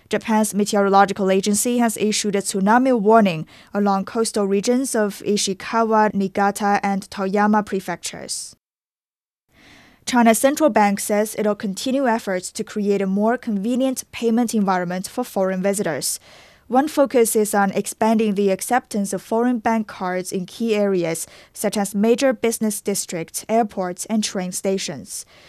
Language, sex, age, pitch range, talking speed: English, female, 20-39, 195-230 Hz, 135 wpm